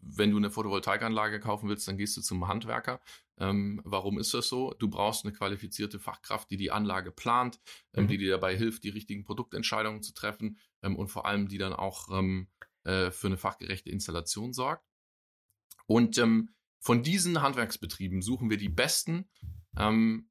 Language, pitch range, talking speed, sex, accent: German, 100-115 Hz, 175 wpm, male, German